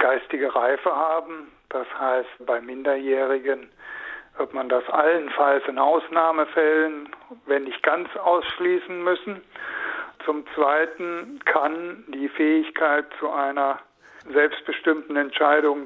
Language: German